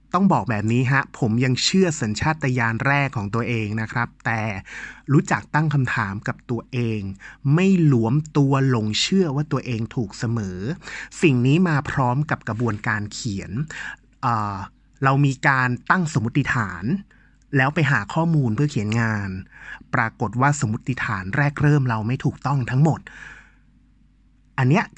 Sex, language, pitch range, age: male, Thai, 115-145 Hz, 30-49